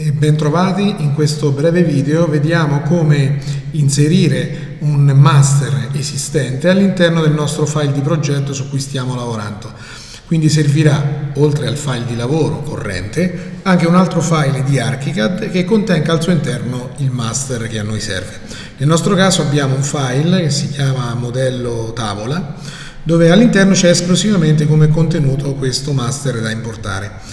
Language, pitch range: Italian, 125-160 Hz